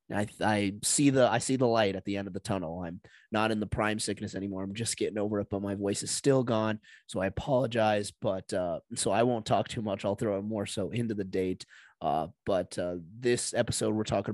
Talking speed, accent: 245 wpm, American